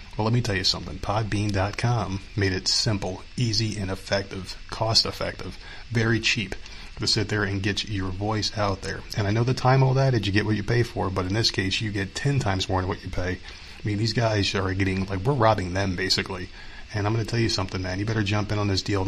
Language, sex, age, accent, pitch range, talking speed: English, male, 30-49, American, 95-105 Hz, 245 wpm